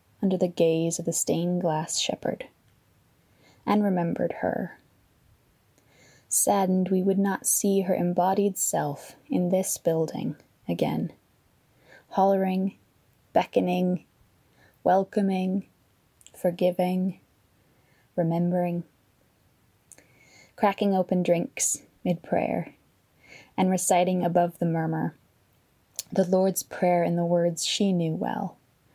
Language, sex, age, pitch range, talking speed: English, female, 20-39, 170-195 Hz, 95 wpm